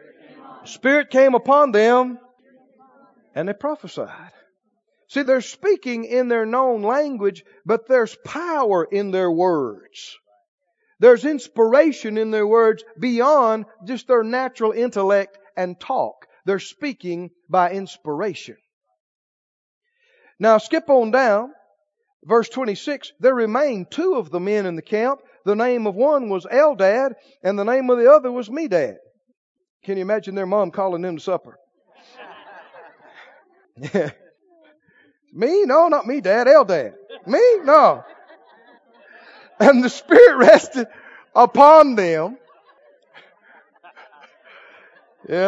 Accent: American